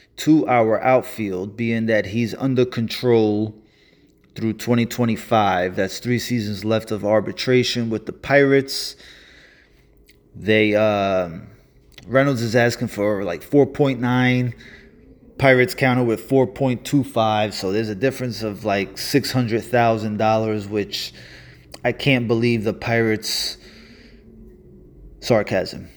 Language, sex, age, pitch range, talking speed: English, male, 20-39, 110-130 Hz, 105 wpm